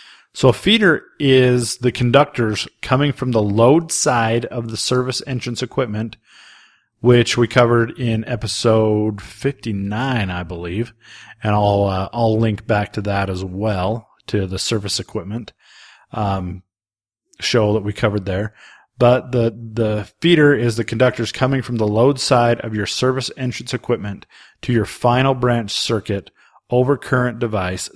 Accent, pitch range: American, 105-125 Hz